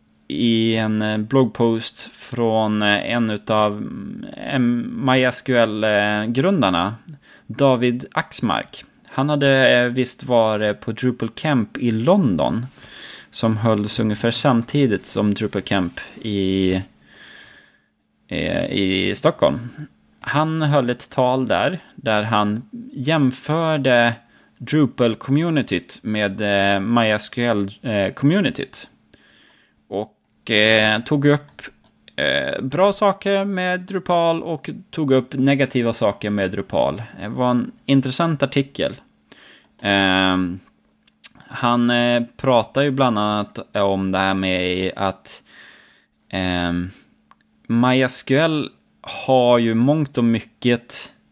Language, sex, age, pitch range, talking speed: Swedish, male, 20-39, 105-135 Hz, 90 wpm